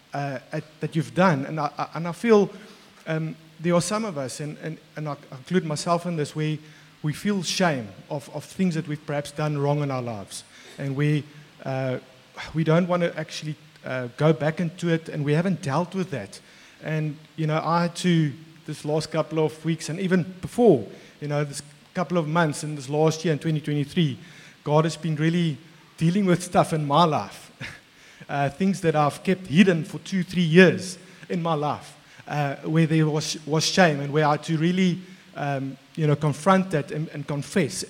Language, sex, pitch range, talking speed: English, male, 150-175 Hz, 200 wpm